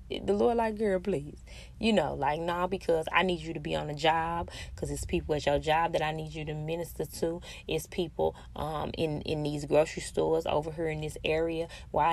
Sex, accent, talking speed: female, American, 230 wpm